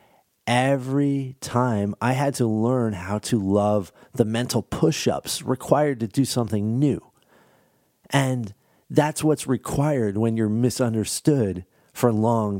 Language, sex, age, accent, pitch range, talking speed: English, male, 40-59, American, 105-135 Hz, 125 wpm